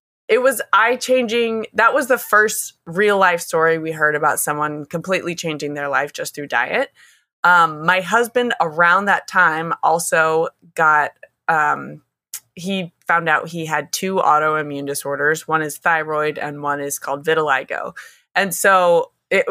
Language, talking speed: English, 150 wpm